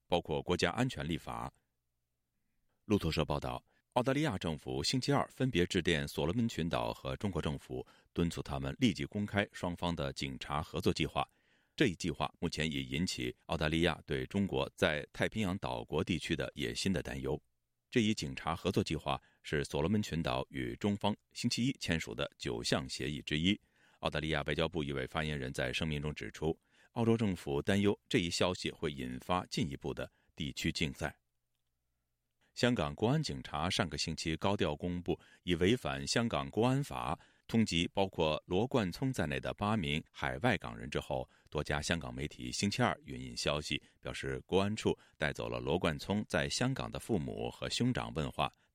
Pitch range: 70-105 Hz